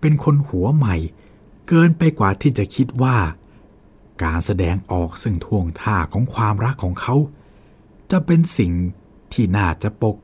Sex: male